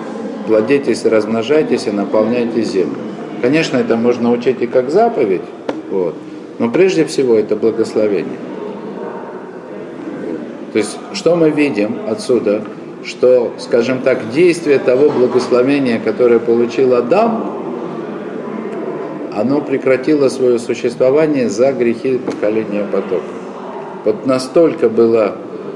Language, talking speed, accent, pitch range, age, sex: Russian, 100 wpm, native, 110-155 Hz, 50-69, male